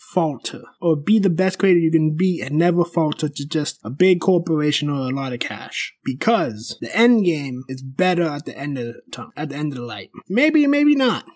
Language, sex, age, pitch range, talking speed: English, male, 20-39, 155-195 Hz, 225 wpm